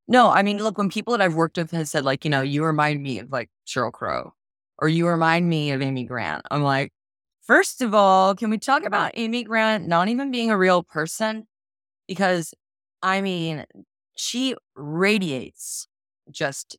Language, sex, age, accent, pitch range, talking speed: English, female, 20-39, American, 145-220 Hz, 185 wpm